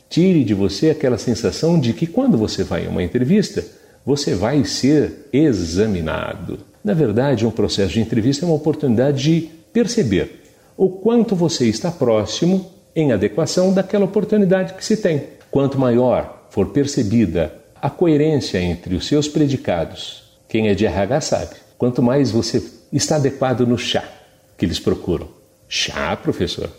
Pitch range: 105-155 Hz